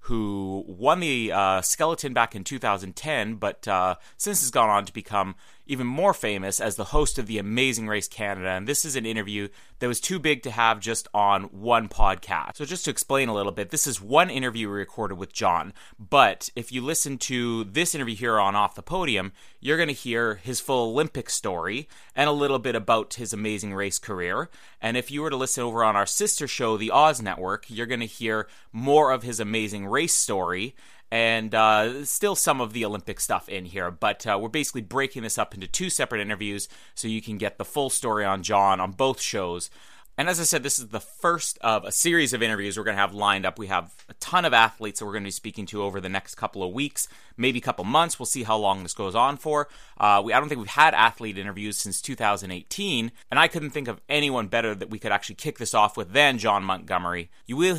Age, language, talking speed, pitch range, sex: 30-49, English, 235 wpm, 100-135 Hz, male